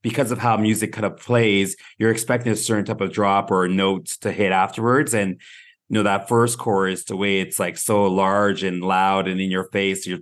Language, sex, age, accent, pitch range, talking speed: English, male, 30-49, American, 95-120 Hz, 225 wpm